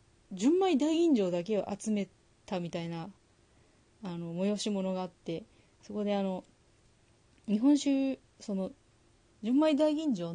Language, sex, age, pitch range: Japanese, female, 30-49, 165-225 Hz